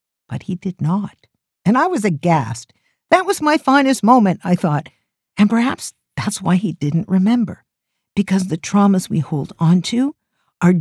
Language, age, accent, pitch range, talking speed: English, 50-69, American, 145-200 Hz, 165 wpm